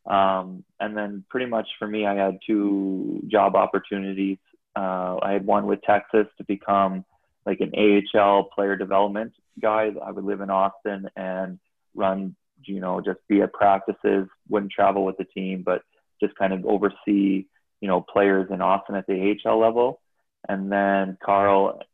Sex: male